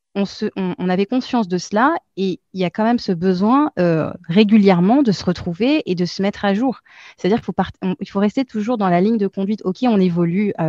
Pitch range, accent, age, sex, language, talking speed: 170-210 Hz, French, 20-39, female, French, 245 wpm